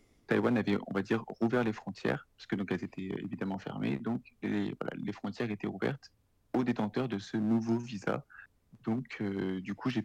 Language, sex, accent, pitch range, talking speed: French, male, French, 100-120 Hz, 190 wpm